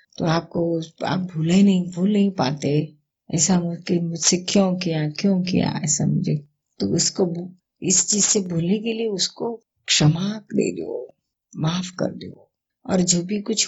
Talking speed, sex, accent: 160 wpm, female, native